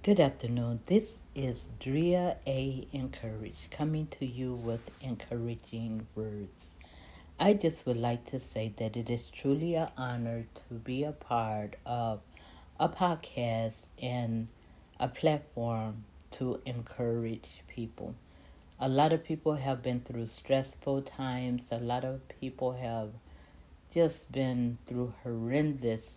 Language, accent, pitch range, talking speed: English, American, 115-145 Hz, 130 wpm